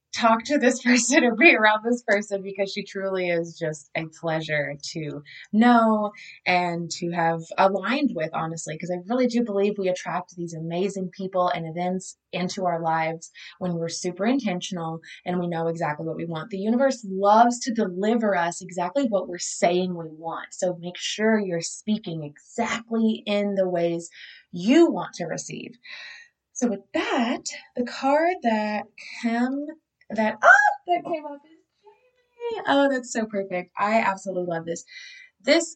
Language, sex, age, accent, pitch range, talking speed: English, female, 20-39, American, 175-230 Hz, 165 wpm